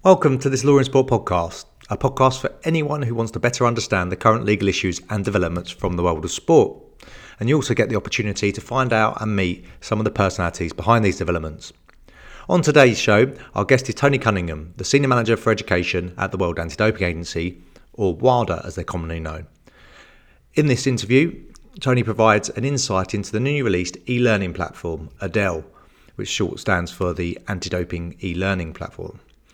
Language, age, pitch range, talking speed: English, 30-49, 90-115 Hz, 185 wpm